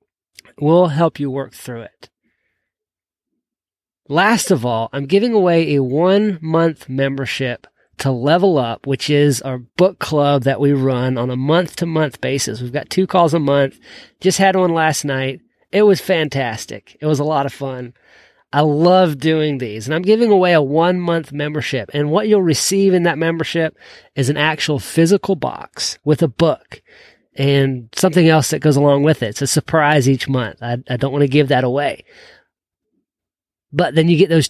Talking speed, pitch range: 175 wpm, 135-175 Hz